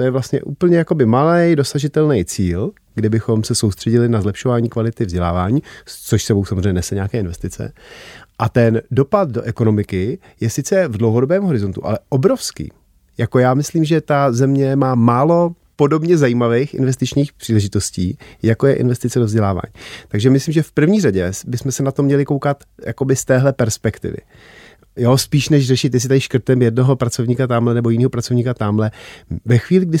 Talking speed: 165 wpm